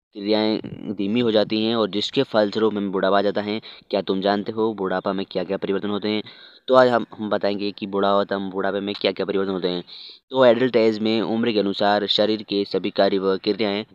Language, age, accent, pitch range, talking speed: Hindi, 20-39, native, 100-110 Hz, 220 wpm